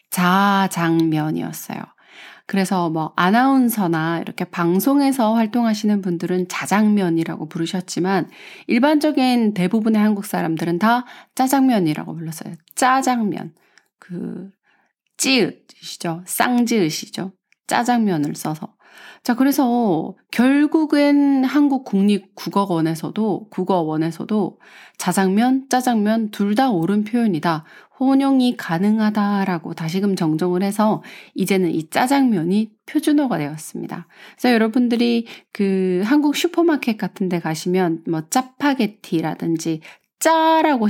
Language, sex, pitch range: Korean, female, 175-250 Hz